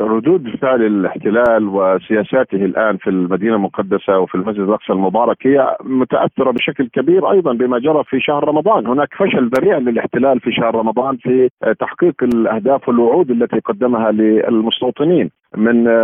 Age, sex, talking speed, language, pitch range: 50-69, male, 140 wpm, Arabic, 110-135 Hz